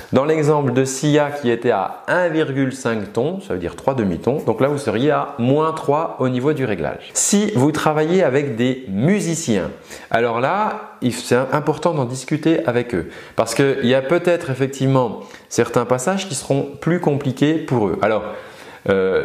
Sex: male